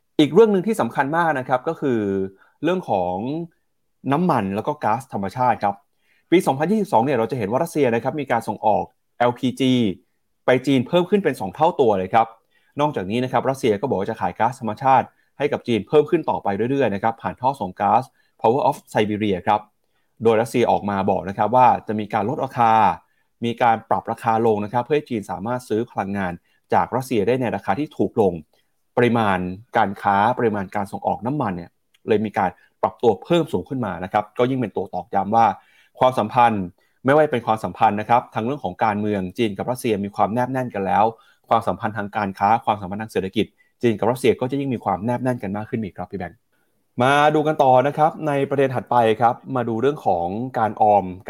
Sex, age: male, 30-49